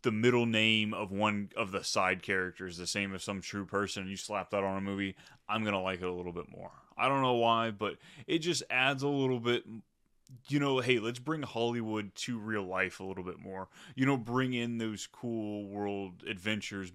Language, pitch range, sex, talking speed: English, 100-125 Hz, male, 215 wpm